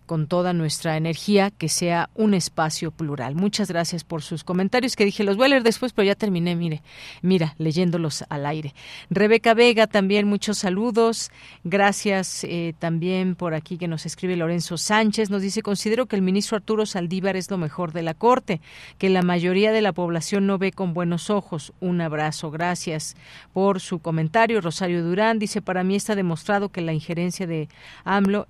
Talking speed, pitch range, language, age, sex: 180 wpm, 165-200 Hz, Spanish, 40-59, female